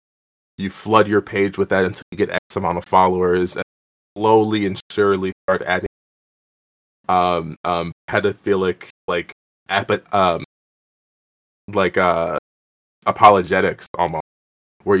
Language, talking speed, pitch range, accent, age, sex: English, 120 wpm, 70-105 Hz, American, 20-39, male